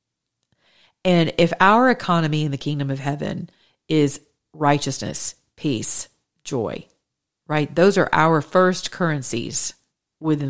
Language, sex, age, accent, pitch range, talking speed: English, female, 40-59, American, 145-175 Hz, 115 wpm